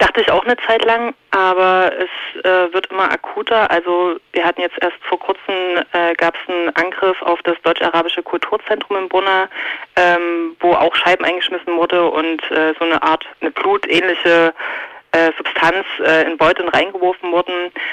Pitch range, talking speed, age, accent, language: 160-180 Hz, 155 wpm, 20-39, German, German